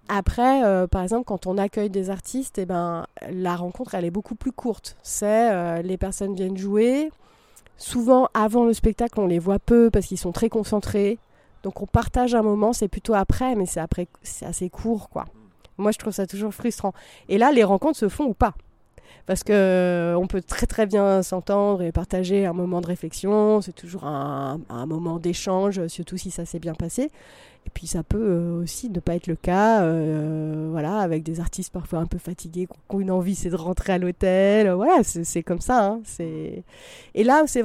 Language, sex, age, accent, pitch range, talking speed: French, female, 30-49, French, 175-215 Hz, 205 wpm